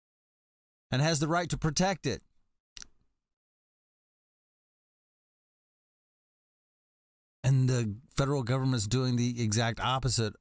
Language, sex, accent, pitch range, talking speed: English, male, American, 110-140 Hz, 85 wpm